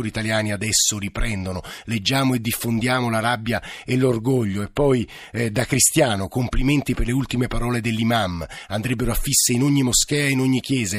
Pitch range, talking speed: 110-130 Hz, 165 wpm